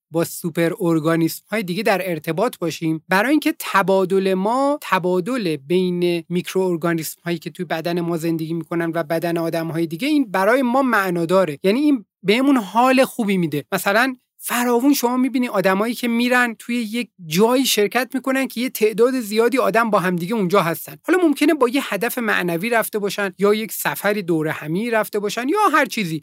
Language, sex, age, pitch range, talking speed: Persian, male, 30-49, 175-245 Hz, 175 wpm